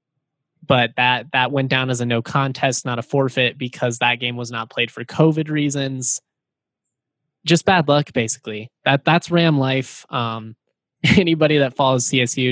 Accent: American